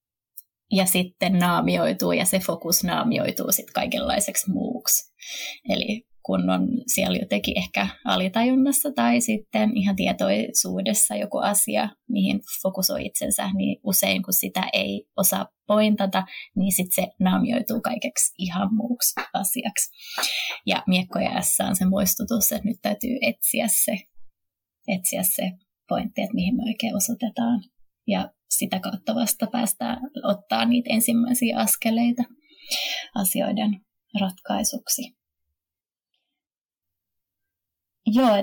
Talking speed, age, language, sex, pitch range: 110 wpm, 20-39, Finnish, female, 185-230 Hz